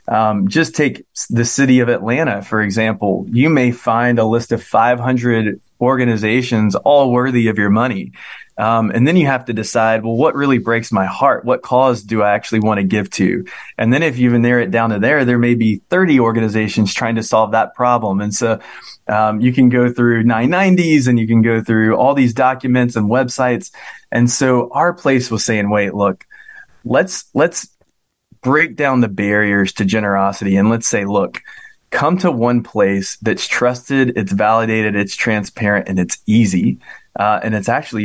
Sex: male